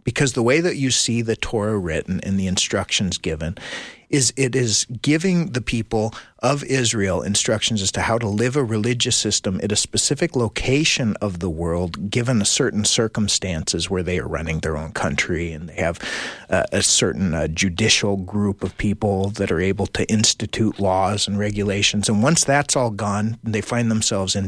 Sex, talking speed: male, 190 wpm